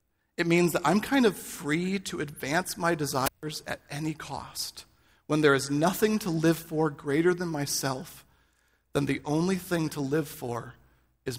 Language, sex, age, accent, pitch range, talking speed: English, male, 40-59, American, 125-165 Hz, 170 wpm